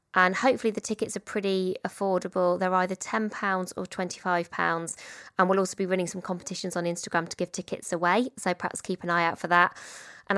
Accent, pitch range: British, 180-210 Hz